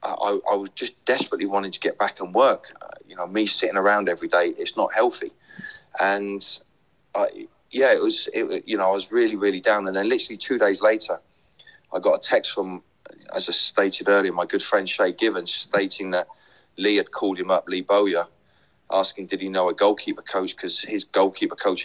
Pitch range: 90-115 Hz